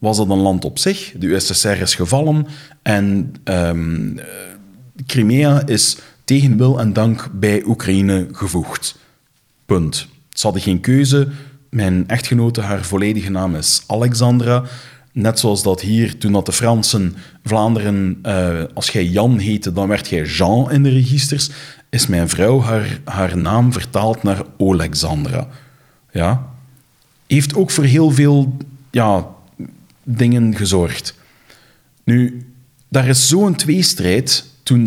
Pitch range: 95-135 Hz